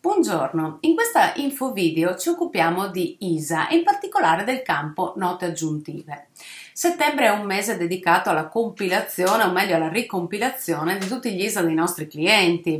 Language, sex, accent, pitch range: Italian, female, native, 170-255 Hz